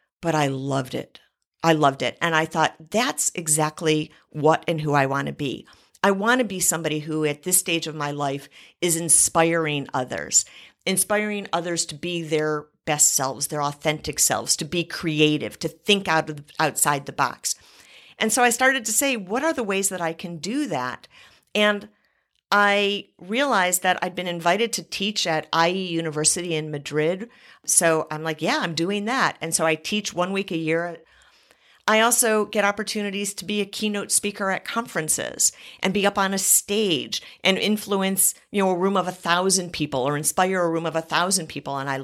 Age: 50-69